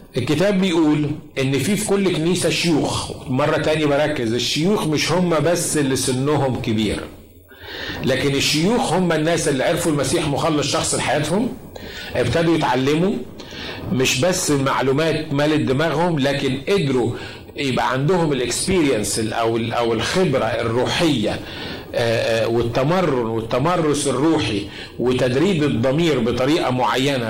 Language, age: Arabic, 50-69